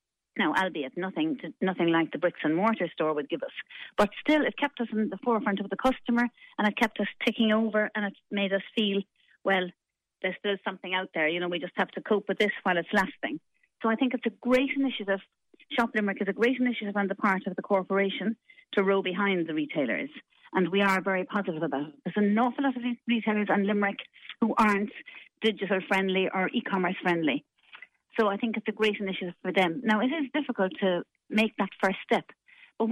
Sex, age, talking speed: female, 40-59, 215 wpm